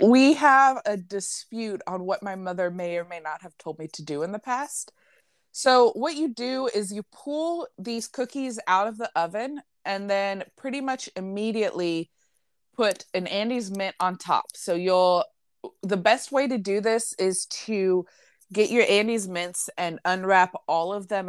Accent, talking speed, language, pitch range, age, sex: American, 180 wpm, English, 175-225 Hz, 20-39, female